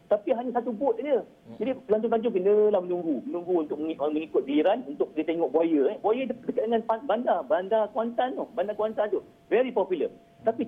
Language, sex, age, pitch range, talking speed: Malay, male, 50-69, 155-240 Hz, 170 wpm